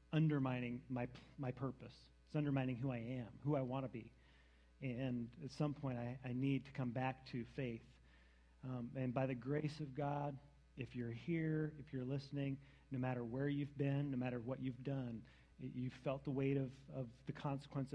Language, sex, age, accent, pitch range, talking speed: English, male, 40-59, American, 120-150 Hz, 190 wpm